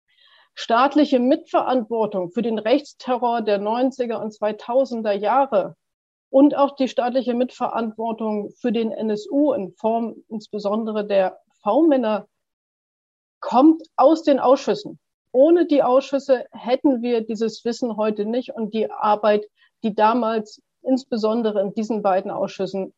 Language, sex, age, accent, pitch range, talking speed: German, female, 40-59, German, 215-265 Hz, 120 wpm